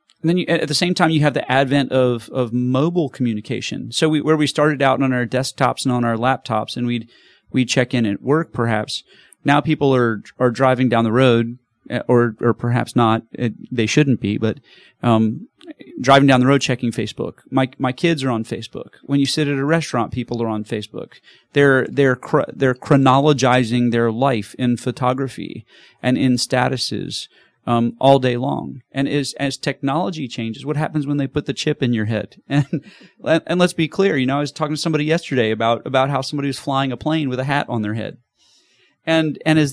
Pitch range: 120-150 Hz